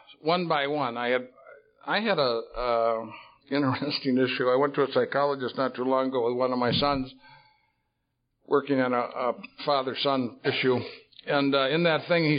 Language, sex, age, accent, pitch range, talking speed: English, male, 60-79, American, 130-150 Hz, 185 wpm